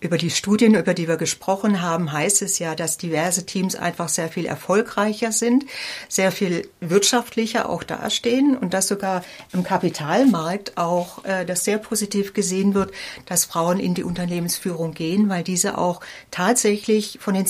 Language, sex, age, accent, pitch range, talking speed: German, female, 60-79, German, 160-200 Hz, 165 wpm